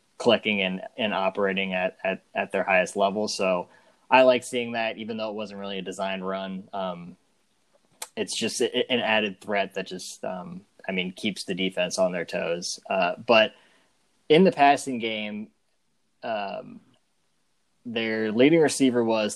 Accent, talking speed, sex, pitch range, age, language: American, 160 wpm, male, 95-120 Hz, 20-39, English